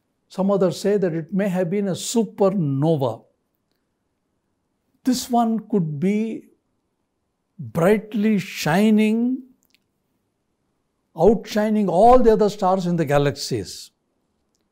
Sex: male